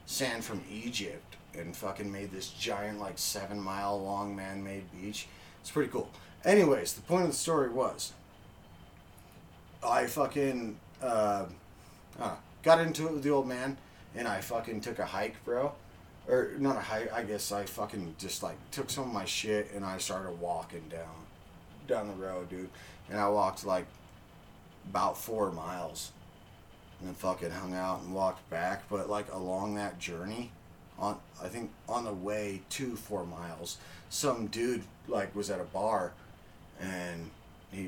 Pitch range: 95-115 Hz